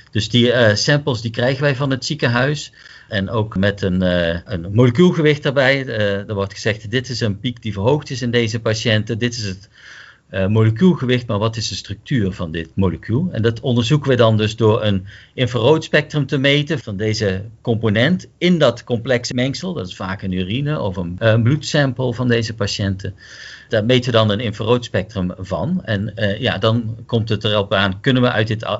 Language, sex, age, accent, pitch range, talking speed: Dutch, male, 50-69, Dutch, 105-130 Hz, 190 wpm